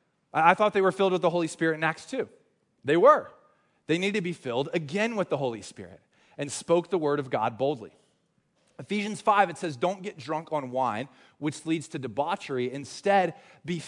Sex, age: male, 20-39